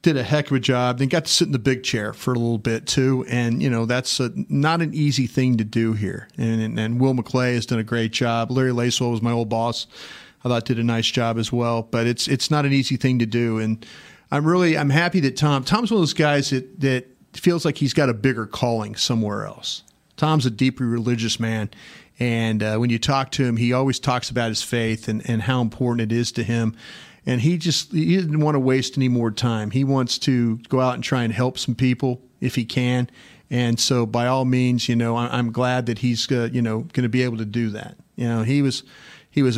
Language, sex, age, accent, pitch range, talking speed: English, male, 40-59, American, 115-135 Hz, 245 wpm